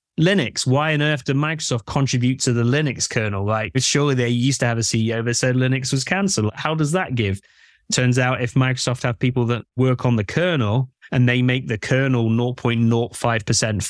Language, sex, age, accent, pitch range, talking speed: English, male, 20-39, British, 115-135 Hz, 195 wpm